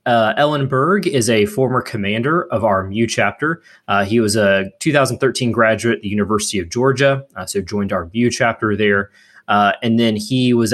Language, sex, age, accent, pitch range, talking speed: English, male, 20-39, American, 105-125 Hz, 190 wpm